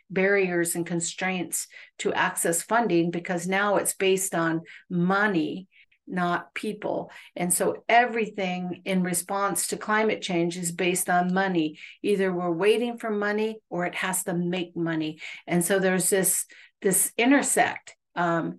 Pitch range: 175-210 Hz